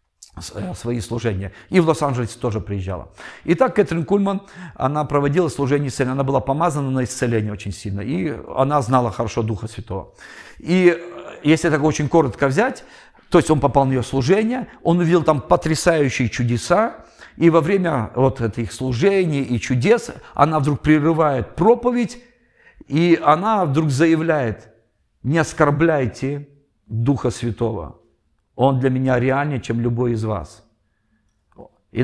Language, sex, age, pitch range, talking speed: Russian, male, 50-69, 115-160 Hz, 140 wpm